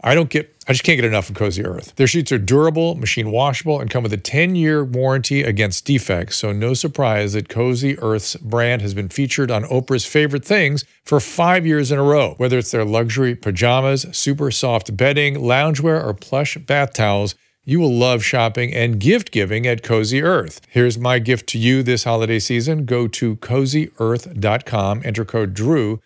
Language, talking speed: English, 185 wpm